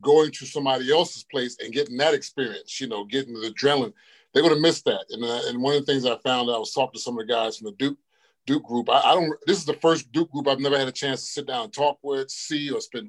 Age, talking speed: 30-49, 290 wpm